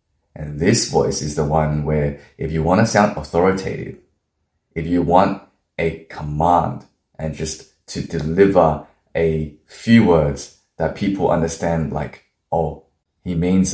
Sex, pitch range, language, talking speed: male, 75-95 Hz, English, 135 wpm